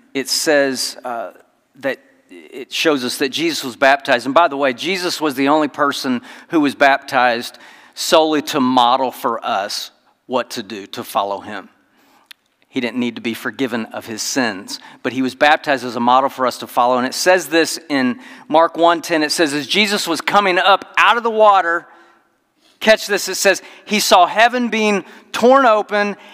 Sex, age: male, 40-59